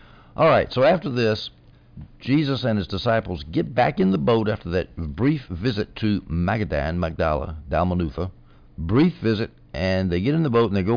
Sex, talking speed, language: male, 180 wpm, English